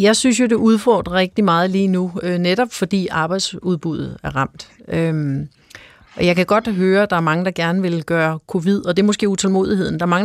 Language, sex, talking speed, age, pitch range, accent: Danish, female, 220 wpm, 40-59, 165-200 Hz, native